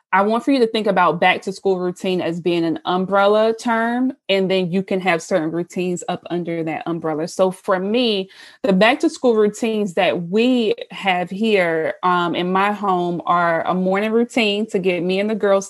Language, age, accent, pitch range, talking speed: English, 20-39, American, 175-210 Hz, 205 wpm